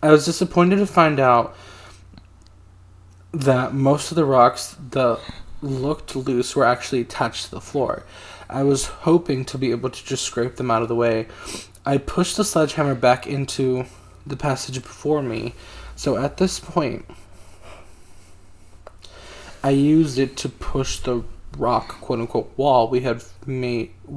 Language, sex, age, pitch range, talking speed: English, male, 20-39, 115-145 Hz, 150 wpm